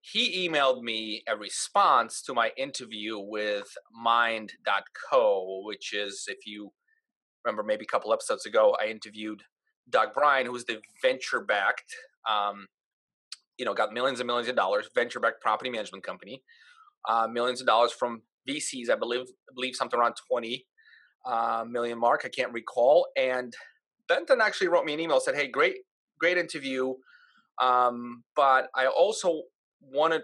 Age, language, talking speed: 30-49, English, 155 wpm